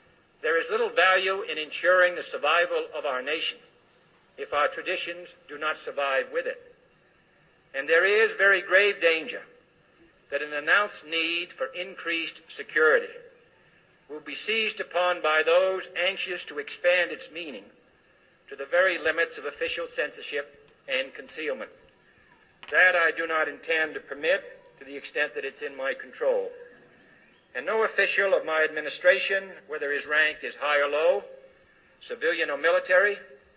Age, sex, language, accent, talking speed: 60-79, male, English, American, 150 wpm